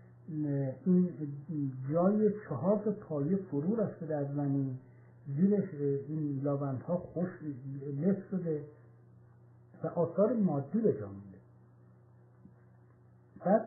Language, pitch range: Persian, 145-210 Hz